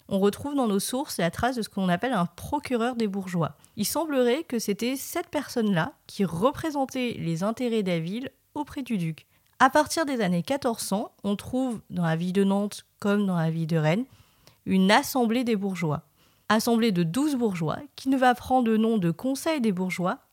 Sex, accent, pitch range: female, French, 185-250 Hz